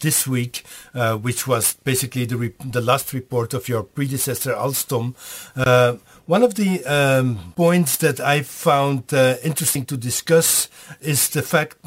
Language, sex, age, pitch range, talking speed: Dutch, male, 50-69, 125-155 Hz, 155 wpm